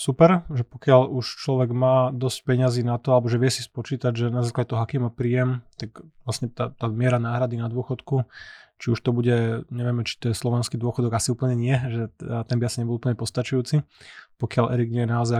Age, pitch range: 20-39, 120-135 Hz